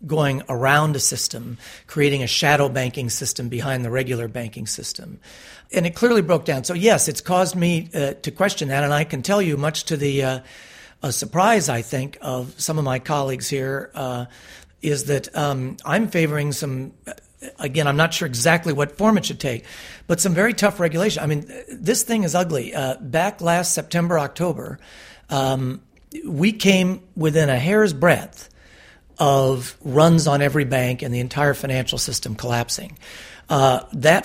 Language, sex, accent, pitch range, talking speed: English, male, American, 130-160 Hz, 175 wpm